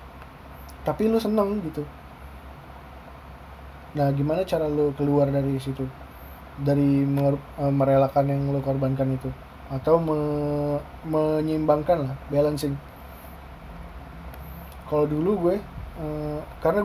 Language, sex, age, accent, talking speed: Indonesian, male, 20-39, native, 95 wpm